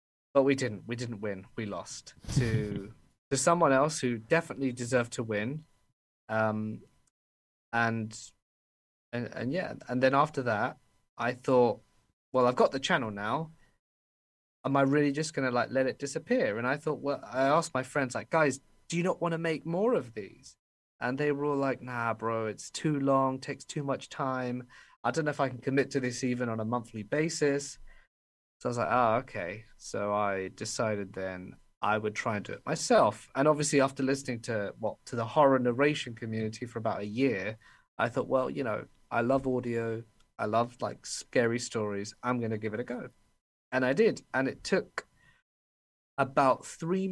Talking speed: 190 wpm